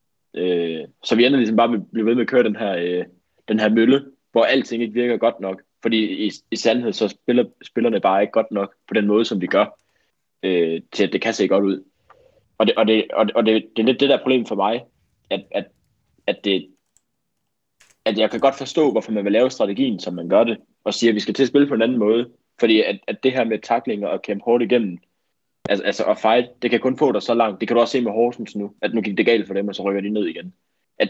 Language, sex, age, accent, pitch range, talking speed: Danish, male, 20-39, native, 100-120 Hz, 265 wpm